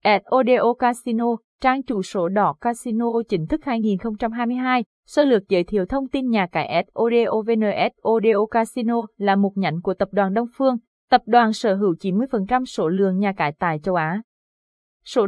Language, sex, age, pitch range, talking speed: Vietnamese, female, 20-39, 190-235 Hz, 165 wpm